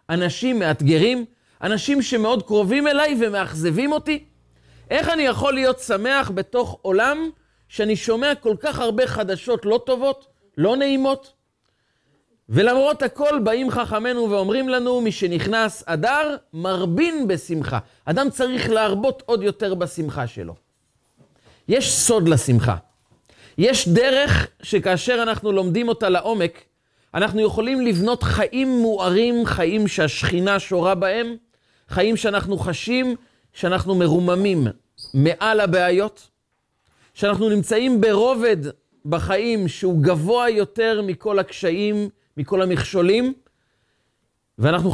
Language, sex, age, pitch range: Hebrew, male, 40-59, 150-235 Hz